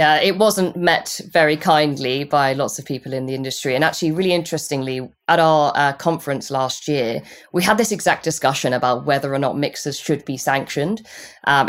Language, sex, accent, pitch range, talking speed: English, female, British, 140-175 Hz, 190 wpm